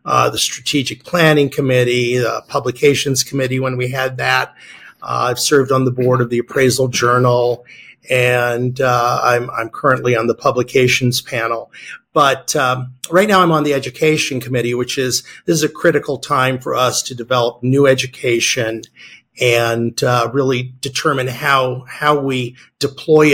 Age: 50-69